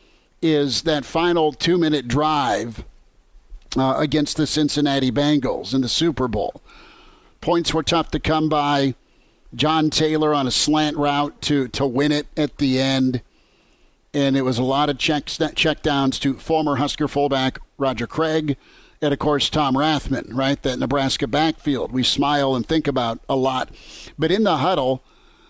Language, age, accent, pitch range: English, 50-69, American, 135-160 Hz